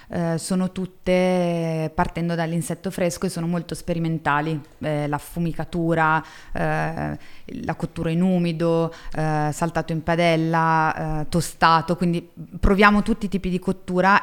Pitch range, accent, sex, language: 165-195 Hz, native, female, Italian